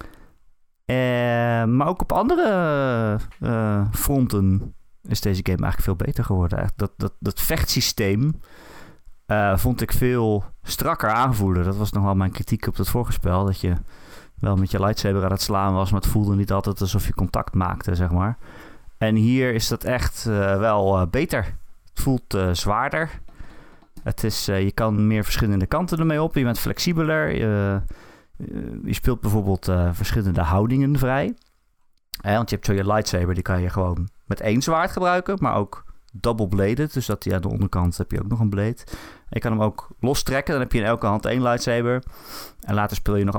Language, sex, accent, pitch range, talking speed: Dutch, male, Dutch, 95-120 Hz, 190 wpm